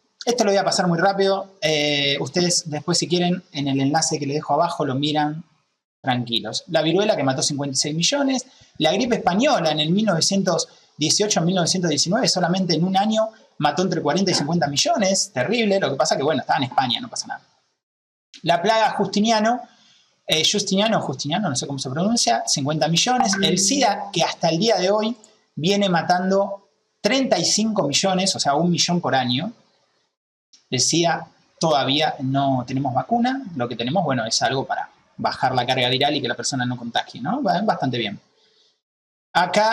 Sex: male